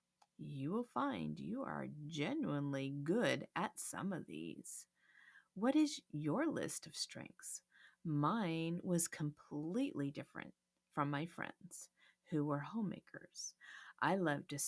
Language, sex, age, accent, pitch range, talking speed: English, female, 30-49, American, 155-230 Hz, 125 wpm